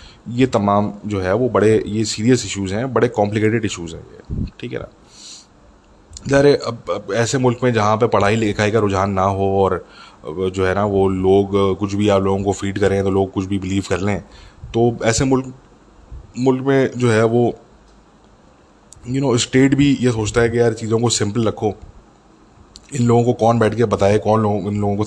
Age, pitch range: 20-39, 95-115 Hz